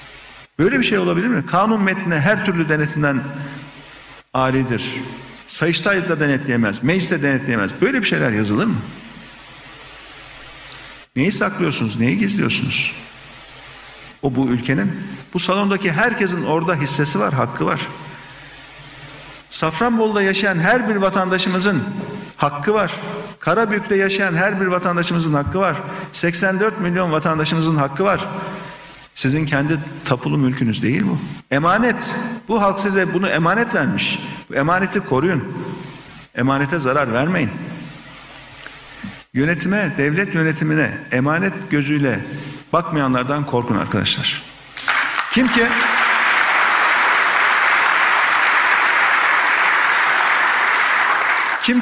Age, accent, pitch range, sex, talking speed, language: 50-69, native, 140-195 Hz, male, 100 wpm, Turkish